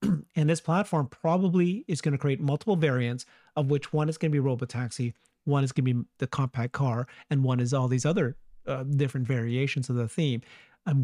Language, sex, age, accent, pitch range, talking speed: English, male, 40-59, American, 135-165 Hz, 210 wpm